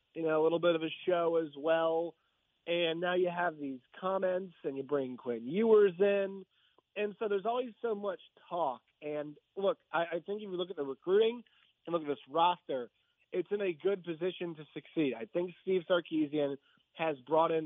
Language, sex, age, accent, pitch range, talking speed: English, male, 30-49, American, 155-195 Hz, 200 wpm